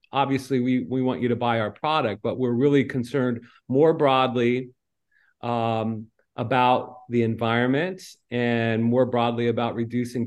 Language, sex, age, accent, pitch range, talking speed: English, male, 40-59, American, 115-135 Hz, 140 wpm